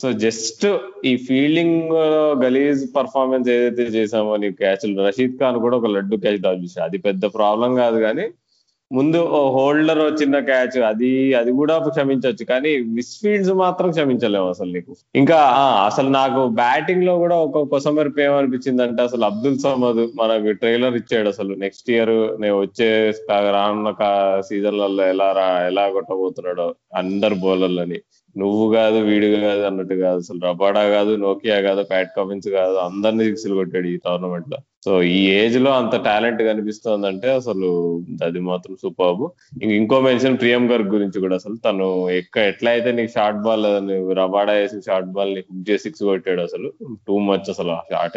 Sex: male